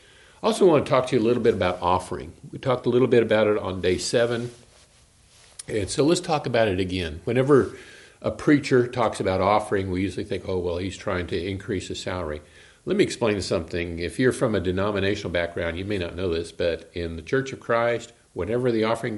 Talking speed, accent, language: 215 wpm, American, English